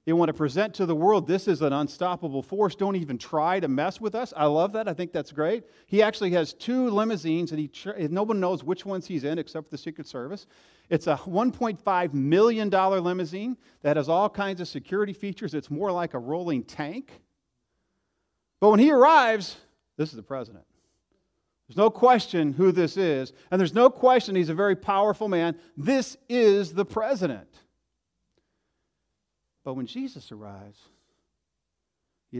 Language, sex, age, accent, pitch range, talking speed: English, male, 40-59, American, 145-210 Hz, 175 wpm